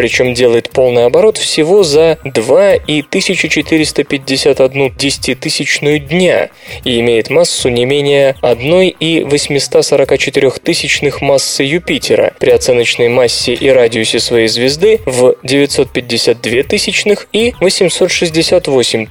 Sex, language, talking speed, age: male, Russian, 105 wpm, 20-39